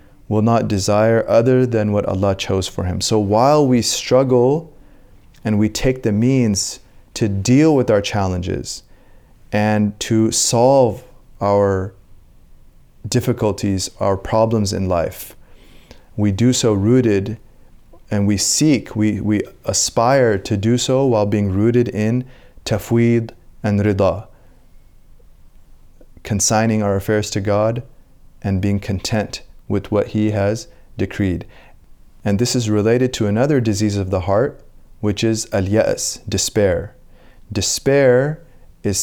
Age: 30-49